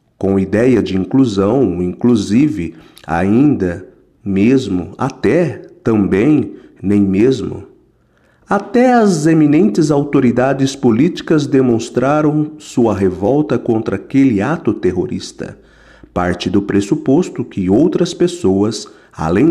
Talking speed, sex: 90 wpm, male